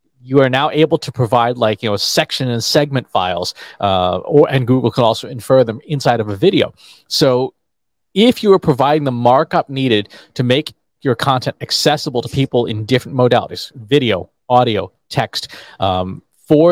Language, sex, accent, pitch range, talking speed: English, male, American, 115-145 Hz, 160 wpm